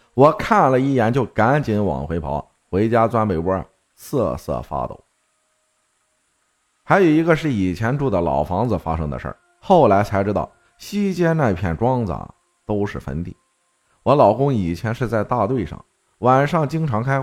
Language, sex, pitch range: Chinese, male, 95-150 Hz